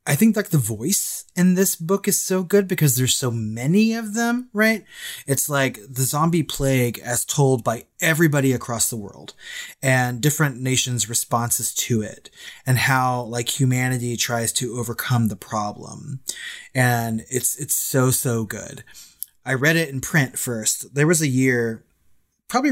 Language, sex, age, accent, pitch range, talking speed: English, male, 20-39, American, 120-145 Hz, 165 wpm